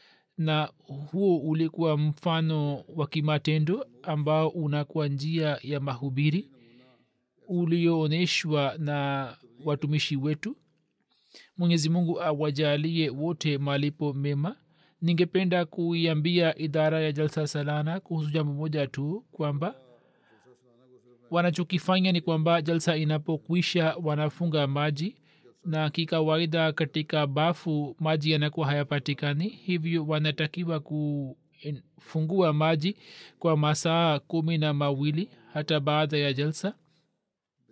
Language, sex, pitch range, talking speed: Swahili, male, 145-165 Hz, 90 wpm